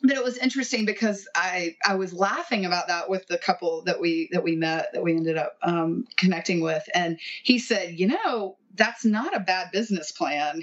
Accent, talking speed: American, 210 wpm